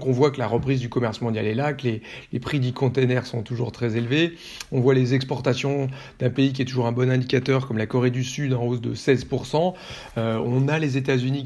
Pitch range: 125-140 Hz